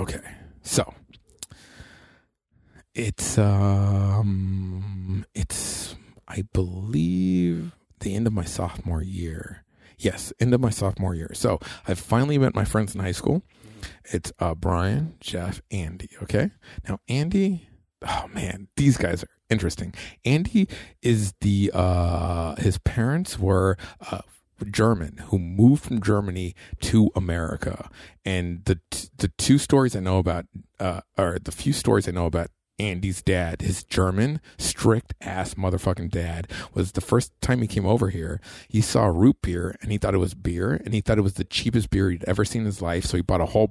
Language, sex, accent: English, male, American